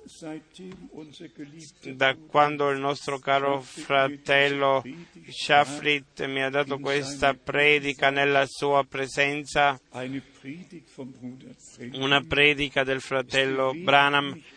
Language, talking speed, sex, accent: Italian, 80 wpm, male, native